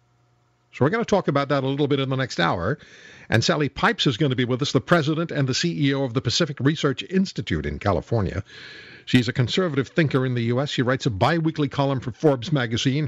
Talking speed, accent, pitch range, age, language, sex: 230 wpm, American, 115-150 Hz, 60-79, English, male